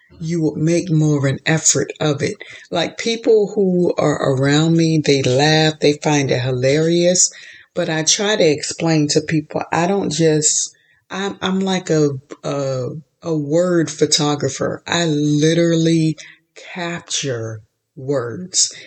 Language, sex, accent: English, female, American